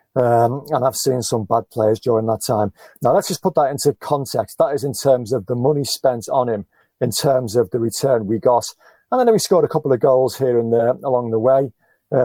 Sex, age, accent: male, 40-59, British